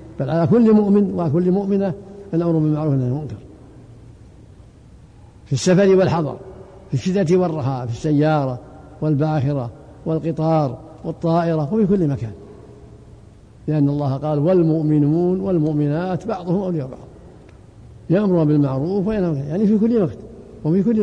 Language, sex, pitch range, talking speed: Arabic, male, 135-165 Hz, 125 wpm